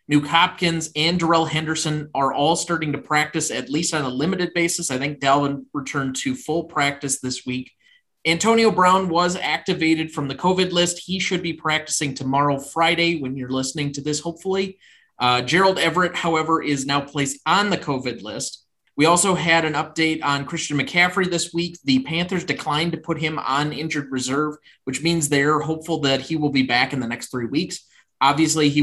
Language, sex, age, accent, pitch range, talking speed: English, male, 30-49, American, 130-165 Hz, 190 wpm